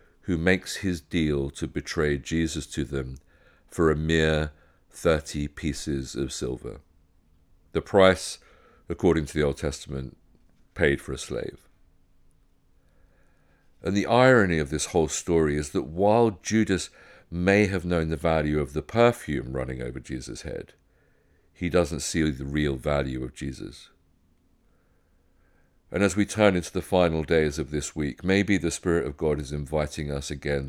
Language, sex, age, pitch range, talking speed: English, male, 50-69, 75-90 Hz, 155 wpm